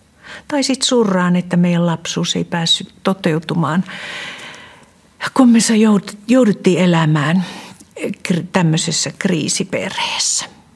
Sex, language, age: female, Finnish, 60-79